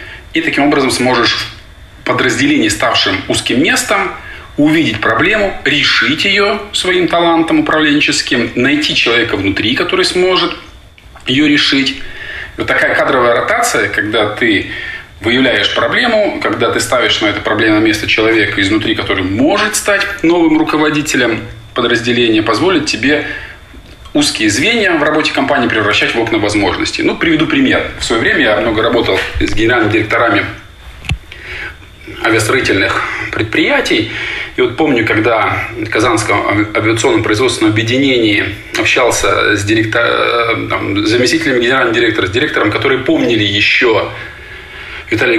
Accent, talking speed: native, 125 wpm